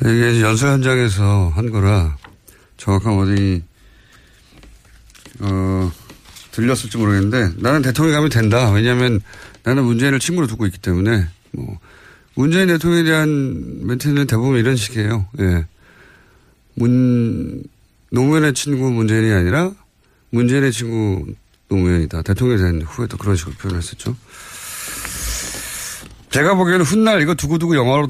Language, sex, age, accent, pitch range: Korean, male, 30-49, native, 100-145 Hz